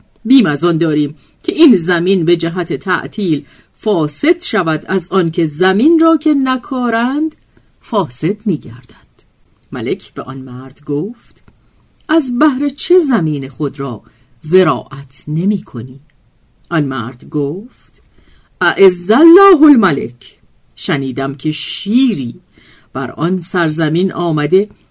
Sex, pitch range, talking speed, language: female, 140-215 Hz, 110 wpm, Persian